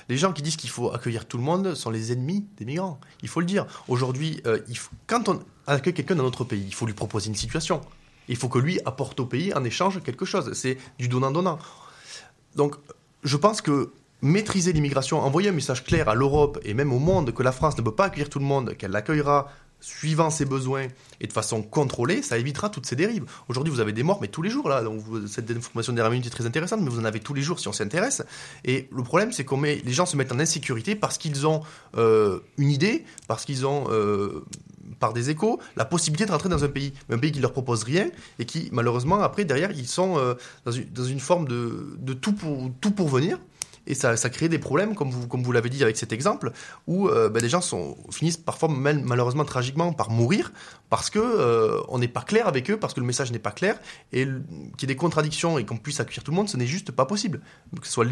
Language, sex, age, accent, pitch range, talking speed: French, male, 20-39, French, 120-165 Hz, 250 wpm